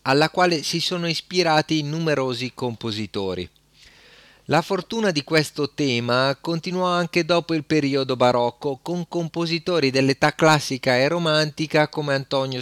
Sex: male